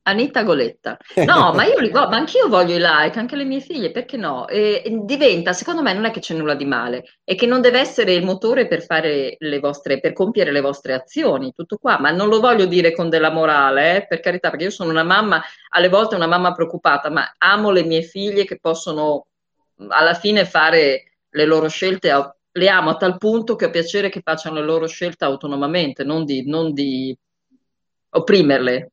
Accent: native